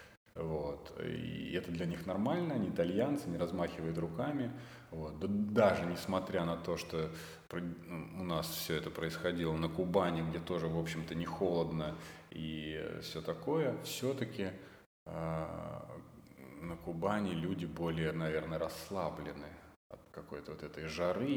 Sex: male